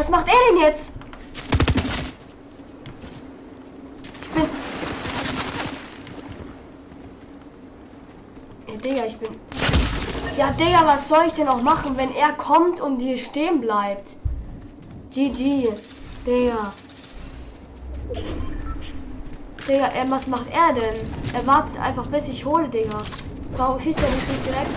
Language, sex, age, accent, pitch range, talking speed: German, female, 20-39, German, 225-285 Hz, 115 wpm